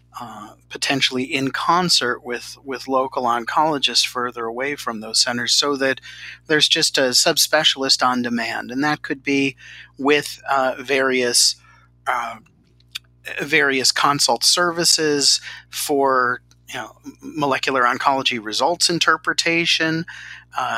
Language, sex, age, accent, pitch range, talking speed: English, male, 40-59, American, 120-145 Hz, 115 wpm